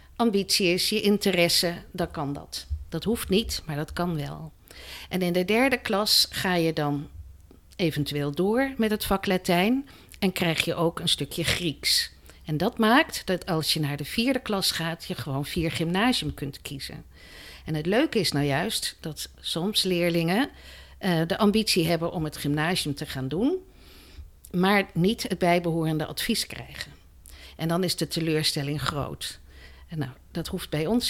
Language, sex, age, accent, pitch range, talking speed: Dutch, female, 50-69, Dutch, 150-200 Hz, 170 wpm